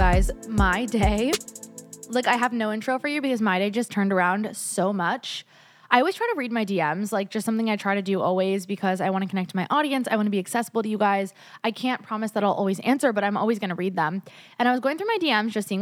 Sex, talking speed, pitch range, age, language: female, 275 wpm, 190-240 Hz, 20-39, English